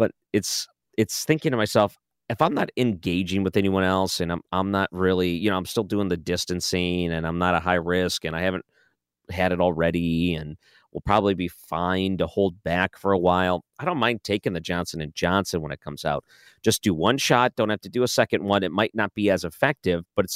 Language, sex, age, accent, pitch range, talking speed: English, male, 40-59, American, 85-110 Hz, 230 wpm